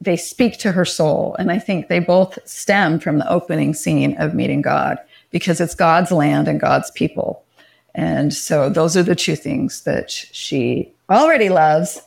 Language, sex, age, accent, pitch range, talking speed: English, female, 40-59, American, 165-210 Hz, 180 wpm